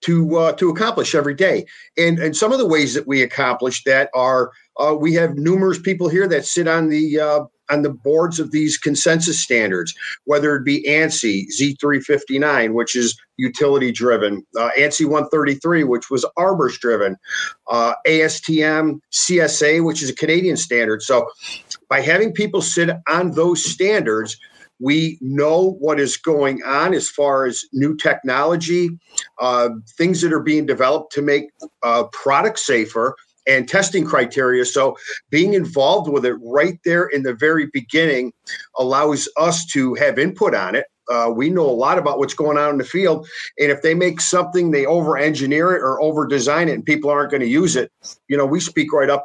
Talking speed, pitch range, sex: 180 wpm, 125-160 Hz, male